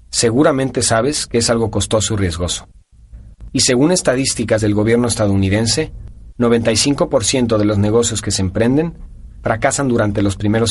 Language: Spanish